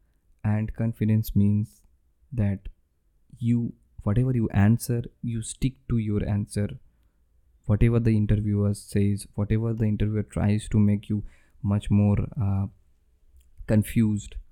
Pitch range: 90-115 Hz